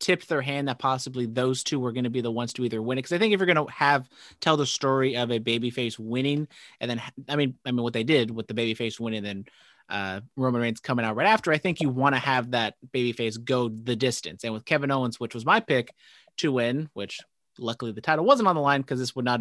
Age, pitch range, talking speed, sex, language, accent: 30-49, 115-140 Hz, 265 wpm, male, English, American